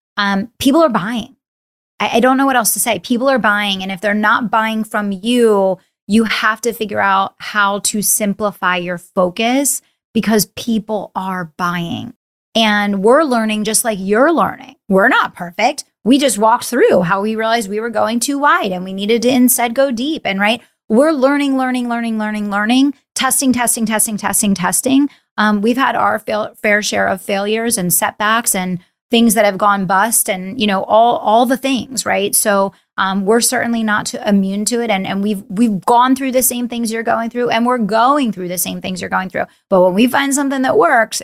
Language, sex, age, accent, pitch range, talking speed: English, female, 30-49, American, 200-240 Hz, 200 wpm